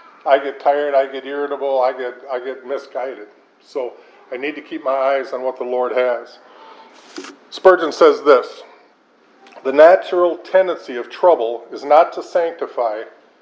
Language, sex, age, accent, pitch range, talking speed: English, male, 50-69, American, 140-205 Hz, 155 wpm